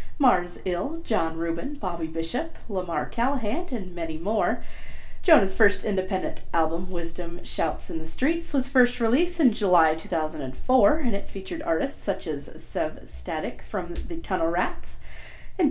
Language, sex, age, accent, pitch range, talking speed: English, female, 40-59, American, 165-250 Hz, 150 wpm